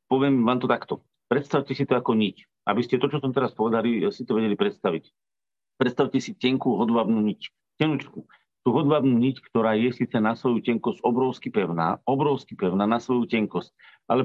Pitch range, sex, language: 105-130 Hz, male, Slovak